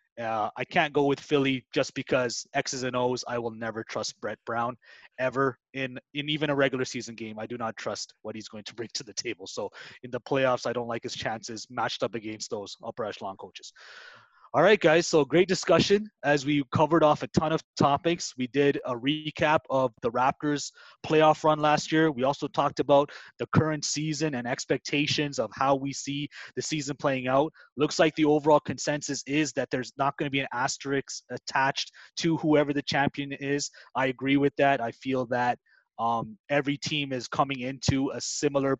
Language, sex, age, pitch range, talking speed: English, male, 20-39, 125-150 Hz, 200 wpm